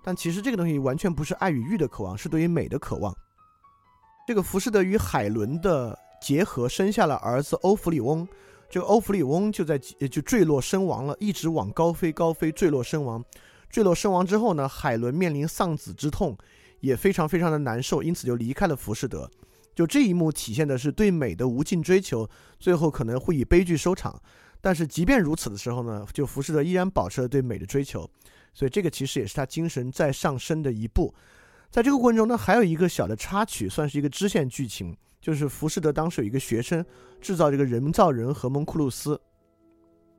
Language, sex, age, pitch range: Chinese, male, 30-49, 125-180 Hz